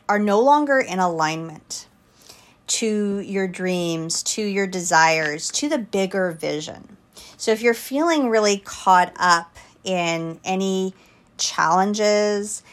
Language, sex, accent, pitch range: English, female, American, 175-210 Hz